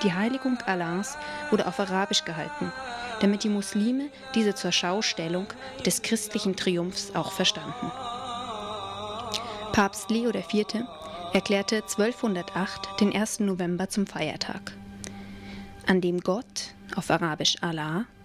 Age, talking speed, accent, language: 20-39, 110 wpm, German, German